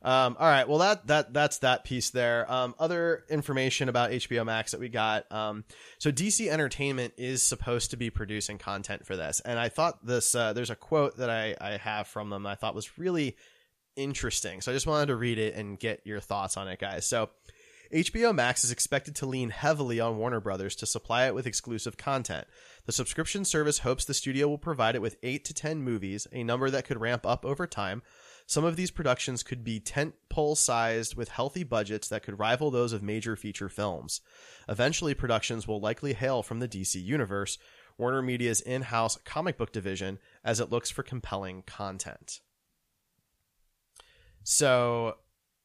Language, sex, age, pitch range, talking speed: English, male, 20-39, 105-135 Hz, 190 wpm